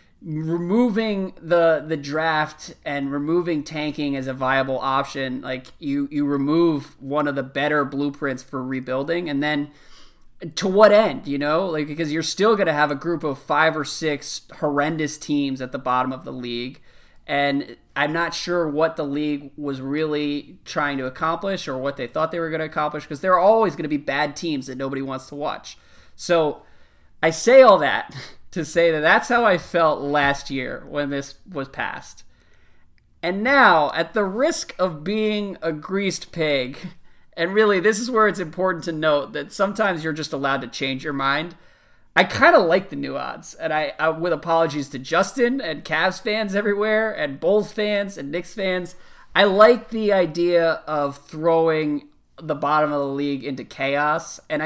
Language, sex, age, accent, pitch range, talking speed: English, male, 20-39, American, 140-180 Hz, 185 wpm